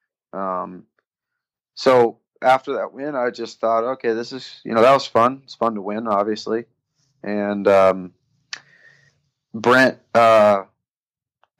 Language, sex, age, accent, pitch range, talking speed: English, male, 30-49, American, 105-120 Hz, 130 wpm